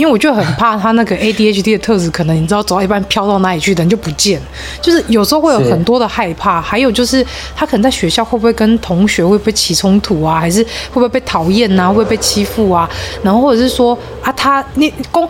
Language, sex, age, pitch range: Chinese, female, 30-49, 180-240 Hz